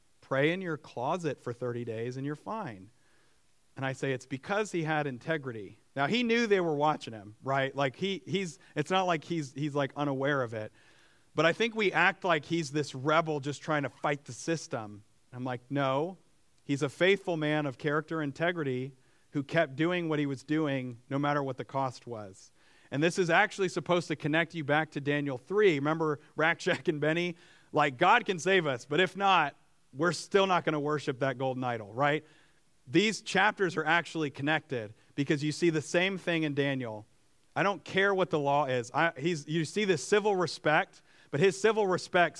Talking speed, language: 200 wpm, English